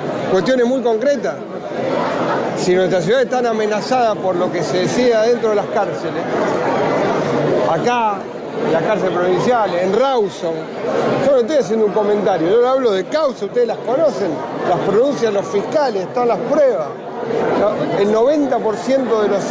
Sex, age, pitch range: male, 40-59, 195-250 Hz